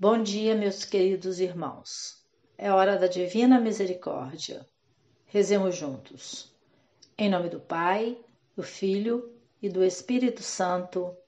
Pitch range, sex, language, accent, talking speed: 185-225 Hz, female, Portuguese, Brazilian, 115 wpm